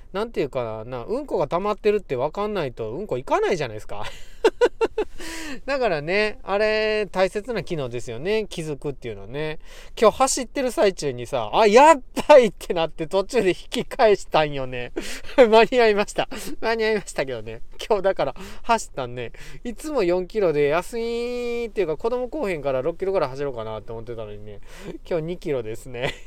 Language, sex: Japanese, male